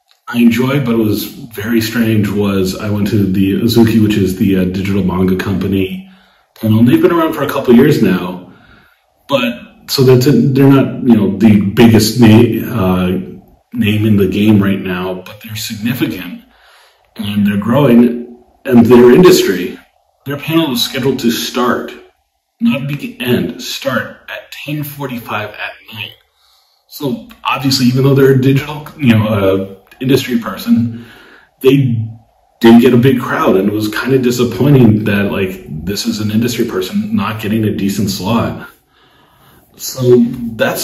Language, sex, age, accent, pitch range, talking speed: English, male, 30-49, American, 100-130 Hz, 160 wpm